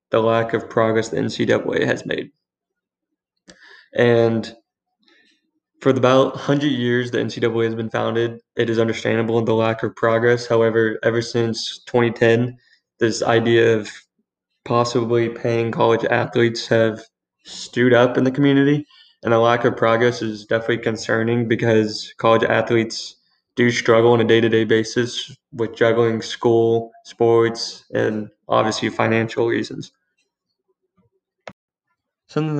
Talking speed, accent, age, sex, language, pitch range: 125 wpm, American, 20-39, male, English, 110-120 Hz